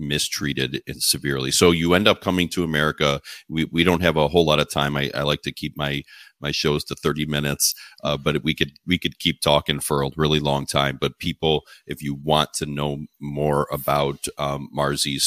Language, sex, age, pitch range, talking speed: English, male, 40-59, 70-80 Hz, 210 wpm